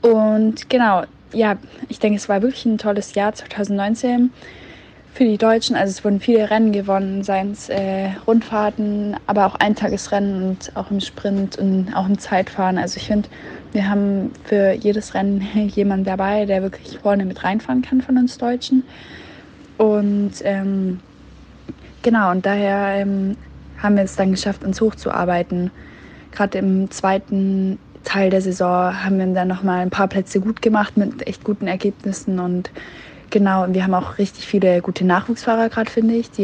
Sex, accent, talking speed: female, German, 170 wpm